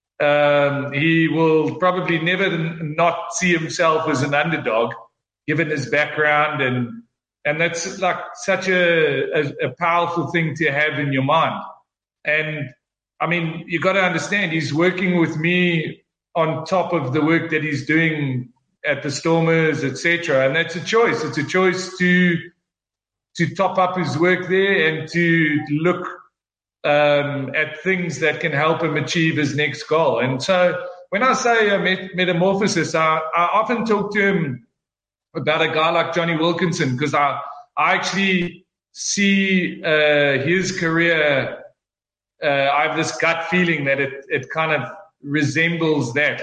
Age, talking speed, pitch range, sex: 40-59, 165 wpm, 150-180 Hz, male